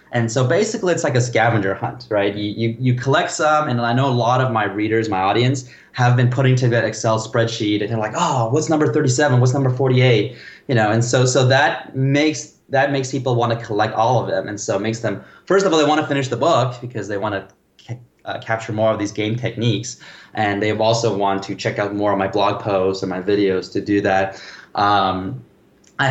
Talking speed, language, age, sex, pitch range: 235 wpm, English, 20-39, male, 105-130 Hz